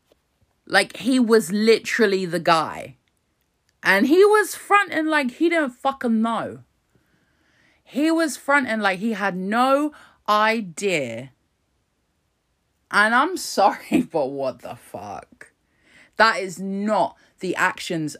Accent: British